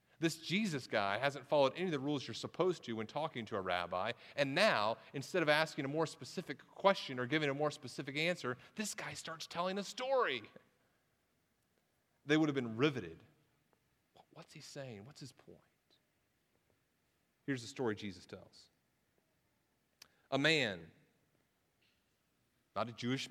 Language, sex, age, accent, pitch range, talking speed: English, male, 30-49, American, 120-155 Hz, 150 wpm